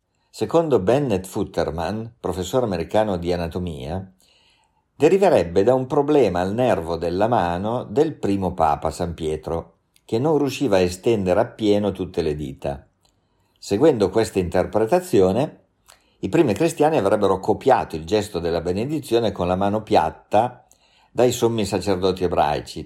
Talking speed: 130 wpm